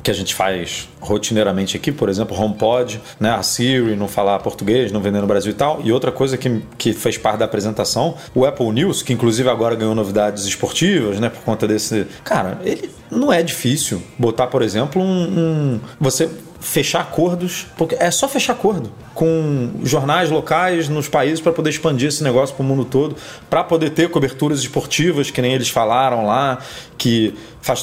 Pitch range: 110-155 Hz